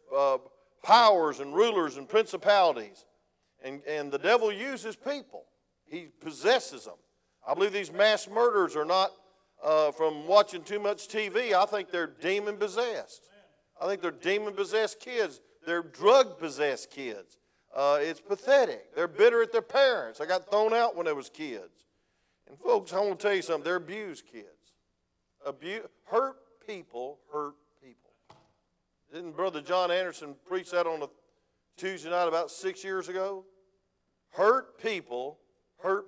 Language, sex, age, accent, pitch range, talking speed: English, male, 50-69, American, 150-215 Hz, 150 wpm